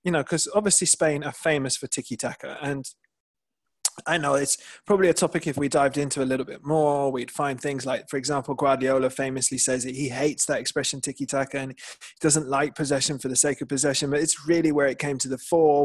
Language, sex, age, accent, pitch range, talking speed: English, male, 20-39, British, 130-155 Hz, 225 wpm